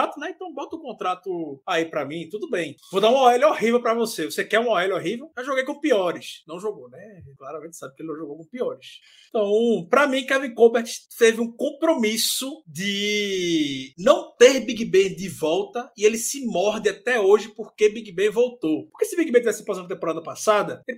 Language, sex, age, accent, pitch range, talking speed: Portuguese, male, 20-39, Brazilian, 185-250 Hz, 205 wpm